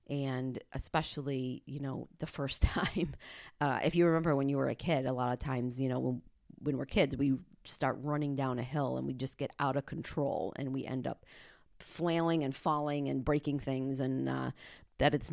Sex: female